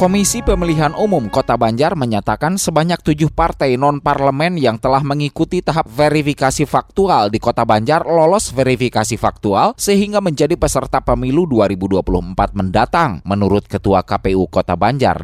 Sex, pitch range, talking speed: male, 105-165 Hz, 130 wpm